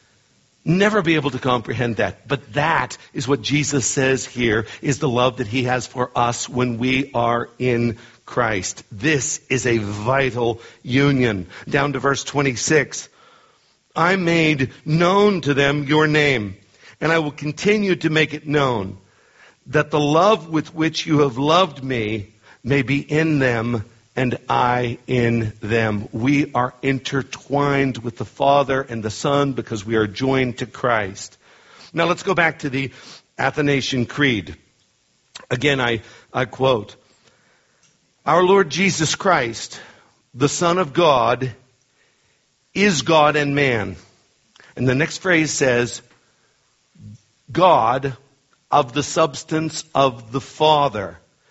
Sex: male